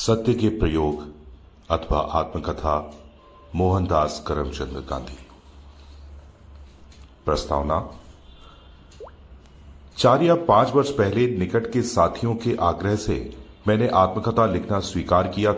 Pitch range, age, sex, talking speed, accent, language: 75-110 Hz, 40-59, male, 95 wpm, native, Hindi